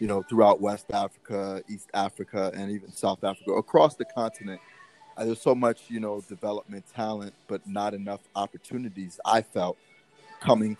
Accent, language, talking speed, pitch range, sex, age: American, English, 160 wpm, 95-110 Hz, male, 30-49